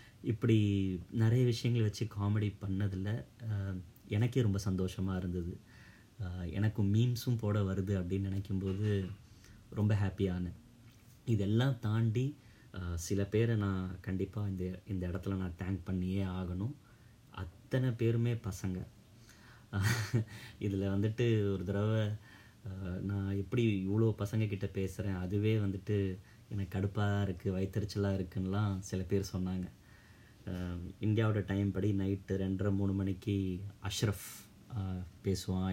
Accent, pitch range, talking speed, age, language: native, 95-105 Hz, 100 wpm, 30-49, Tamil